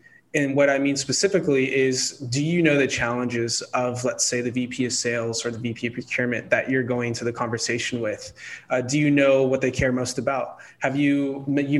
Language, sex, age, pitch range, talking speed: English, male, 20-39, 125-150 Hz, 215 wpm